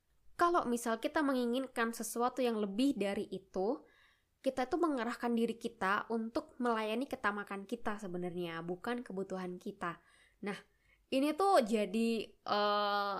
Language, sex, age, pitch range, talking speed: Indonesian, female, 10-29, 200-240 Hz, 125 wpm